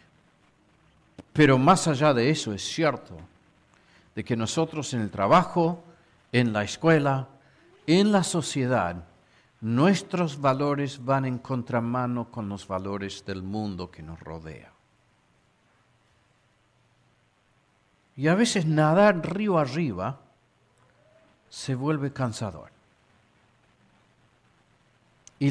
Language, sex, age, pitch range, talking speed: Spanish, male, 50-69, 120-180 Hz, 100 wpm